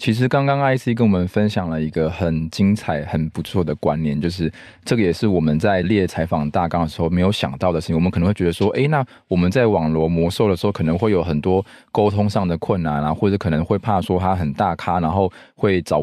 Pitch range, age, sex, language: 80-100 Hz, 20-39, male, Chinese